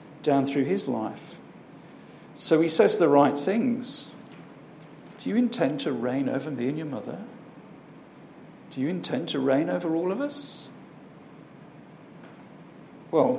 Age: 50-69